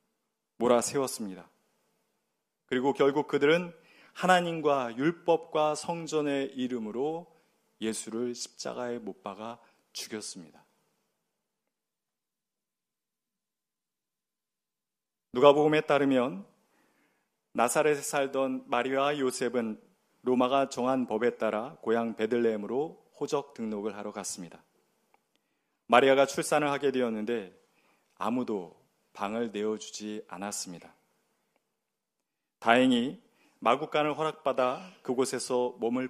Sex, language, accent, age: male, Korean, native, 40-59